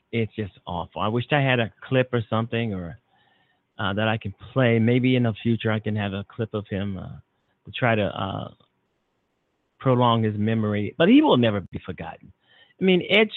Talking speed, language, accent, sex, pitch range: 200 wpm, English, American, male, 110-140 Hz